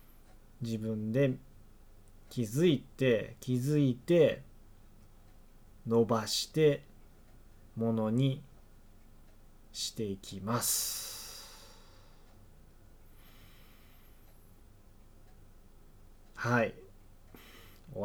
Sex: male